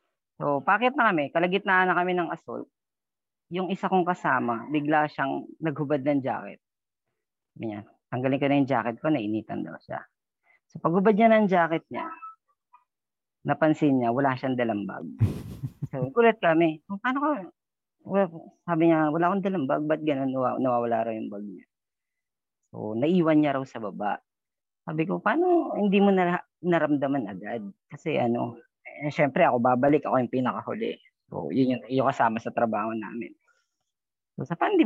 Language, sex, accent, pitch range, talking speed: English, female, Filipino, 125-180 Hz, 160 wpm